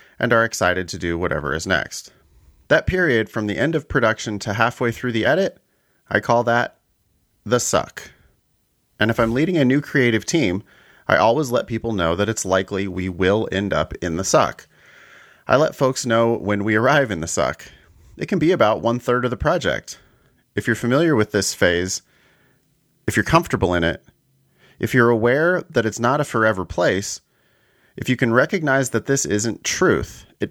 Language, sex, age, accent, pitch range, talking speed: English, male, 30-49, American, 95-125 Hz, 190 wpm